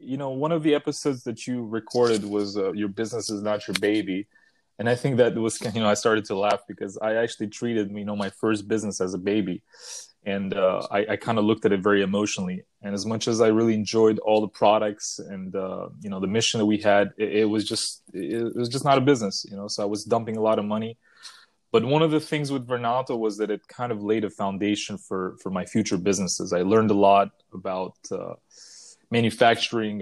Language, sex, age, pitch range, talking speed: English, male, 20-39, 100-115 Hz, 235 wpm